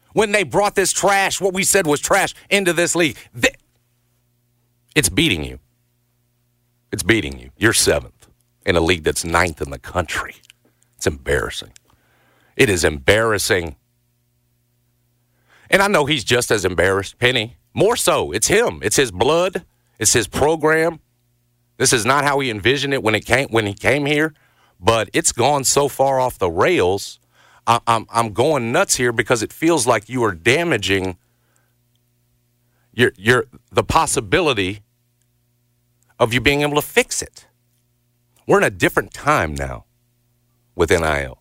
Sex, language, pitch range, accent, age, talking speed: male, English, 110-125 Hz, American, 50-69, 150 wpm